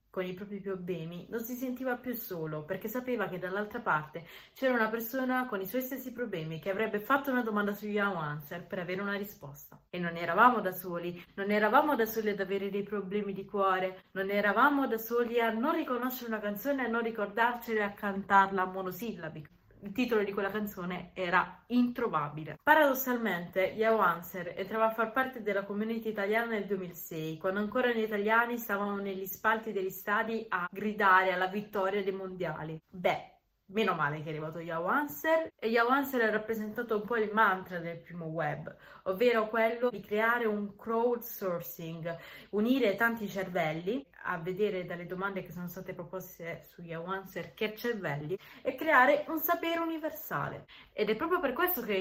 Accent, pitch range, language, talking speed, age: native, 185-230 Hz, Italian, 175 wpm, 30-49